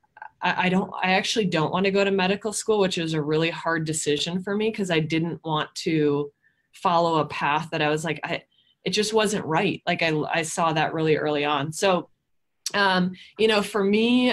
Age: 20-39